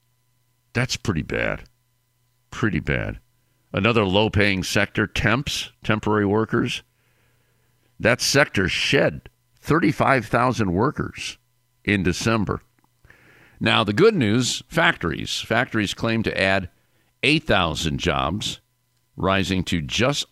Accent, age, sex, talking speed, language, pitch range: American, 50-69, male, 95 wpm, English, 80-120 Hz